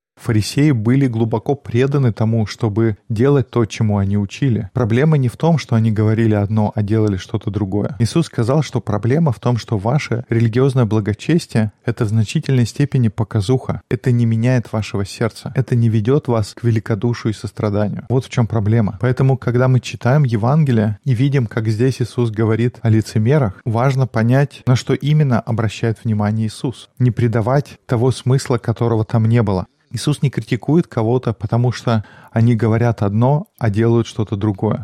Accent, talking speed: native, 165 wpm